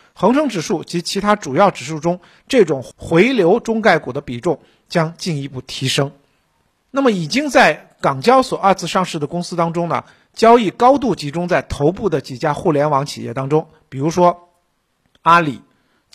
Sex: male